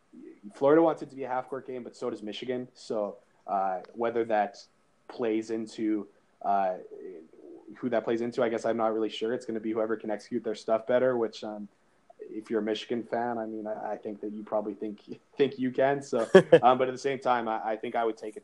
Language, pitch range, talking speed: English, 100-115 Hz, 240 wpm